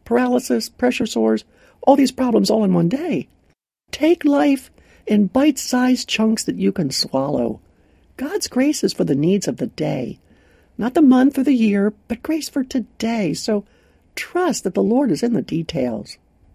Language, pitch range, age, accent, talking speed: English, 165-255 Hz, 60-79, American, 170 wpm